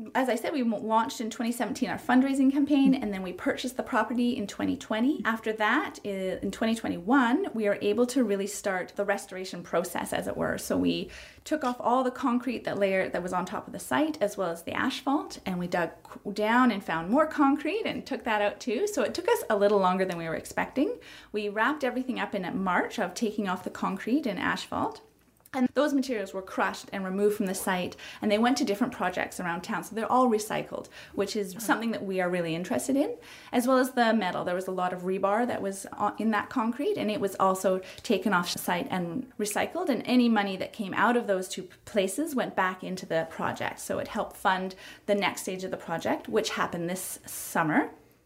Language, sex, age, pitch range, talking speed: English, female, 30-49, 190-255 Hz, 220 wpm